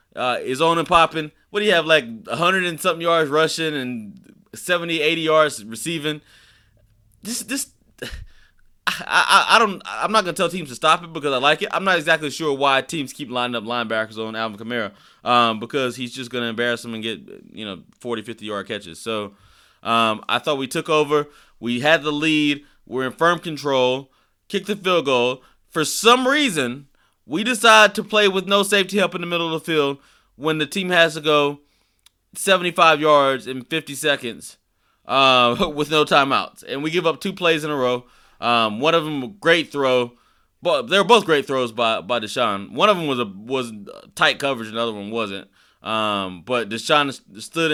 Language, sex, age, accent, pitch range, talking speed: English, male, 20-39, American, 120-165 Hz, 195 wpm